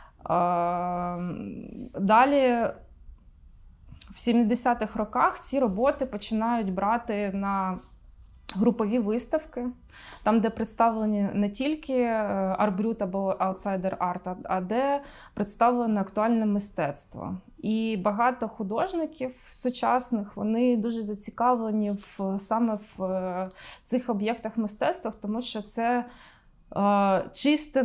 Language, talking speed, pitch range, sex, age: Ukrainian, 90 wpm, 195-235 Hz, female, 20-39